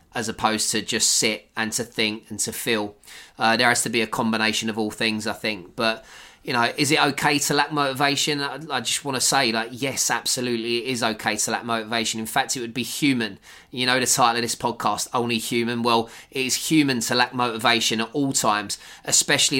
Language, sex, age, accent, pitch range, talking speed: English, male, 20-39, British, 115-130 Hz, 225 wpm